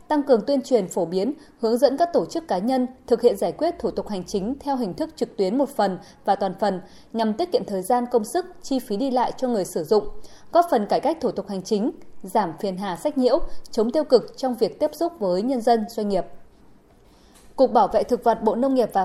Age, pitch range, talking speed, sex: 20-39, 200-265 Hz, 250 wpm, female